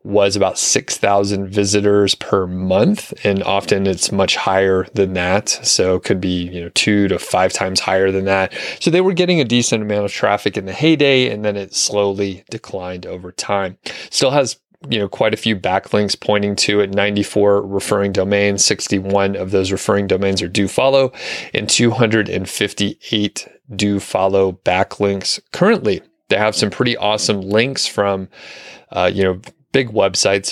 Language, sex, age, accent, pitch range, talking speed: English, male, 30-49, American, 95-110 Hz, 180 wpm